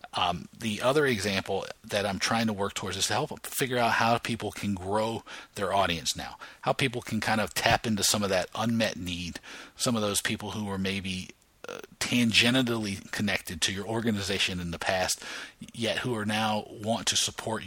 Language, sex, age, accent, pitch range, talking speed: English, male, 40-59, American, 95-115 Hz, 195 wpm